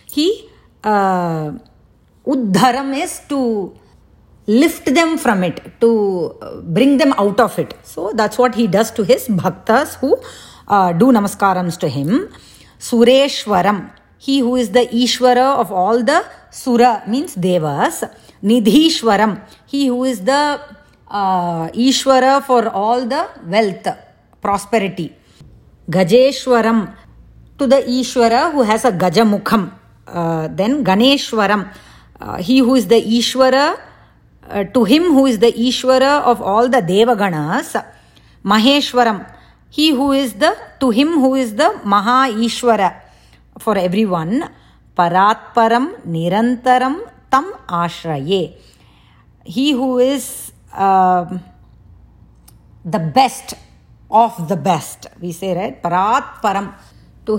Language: English